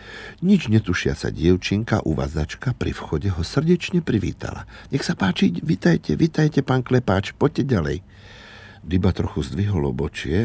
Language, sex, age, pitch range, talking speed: Slovak, male, 60-79, 80-110 Hz, 130 wpm